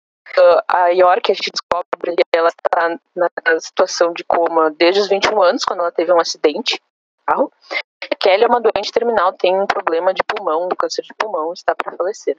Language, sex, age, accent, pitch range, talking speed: Portuguese, female, 10-29, Brazilian, 170-235 Hz, 185 wpm